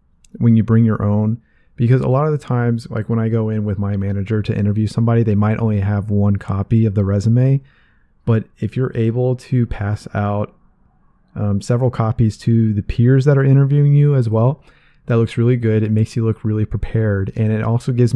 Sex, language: male, English